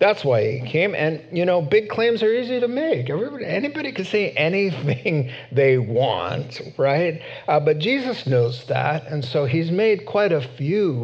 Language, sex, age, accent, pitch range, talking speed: English, male, 50-69, American, 125-160 Hz, 180 wpm